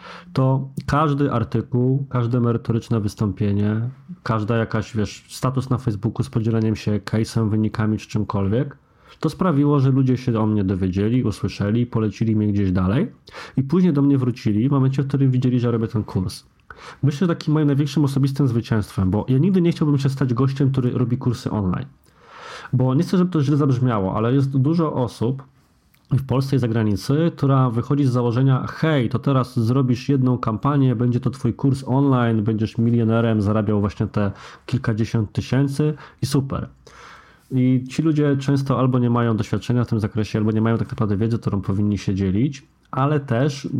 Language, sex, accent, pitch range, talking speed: Polish, male, native, 110-140 Hz, 175 wpm